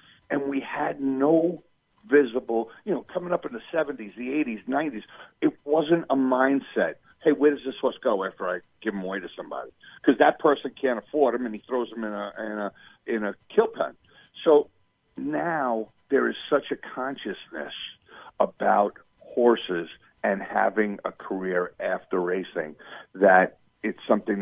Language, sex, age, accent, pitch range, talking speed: English, male, 50-69, American, 105-135 Hz, 165 wpm